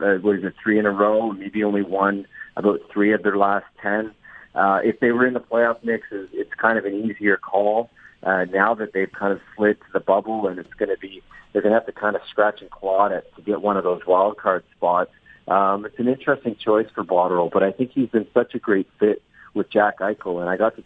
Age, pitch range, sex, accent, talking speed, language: 40-59, 95-115 Hz, male, American, 250 wpm, English